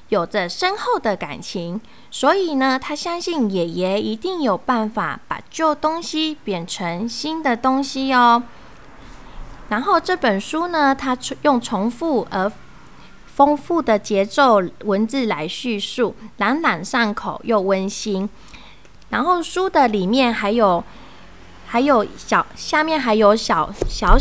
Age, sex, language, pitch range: 20-39, female, Chinese, 205-280 Hz